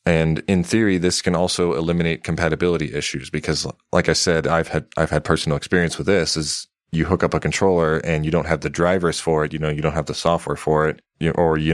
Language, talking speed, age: English, 240 wpm, 30-49